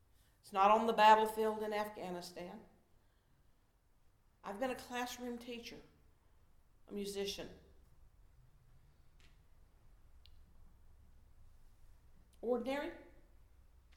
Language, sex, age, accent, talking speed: English, female, 50-69, American, 65 wpm